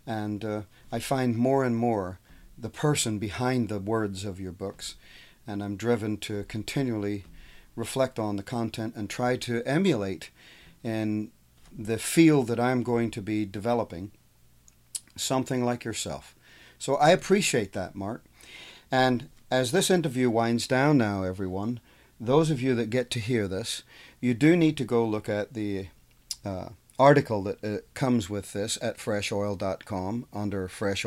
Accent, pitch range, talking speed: American, 100-125 Hz, 155 wpm